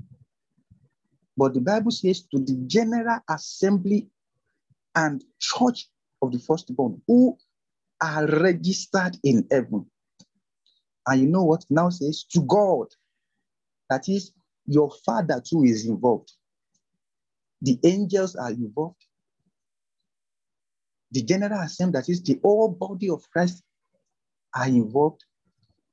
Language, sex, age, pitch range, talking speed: English, male, 50-69, 145-205 Hz, 115 wpm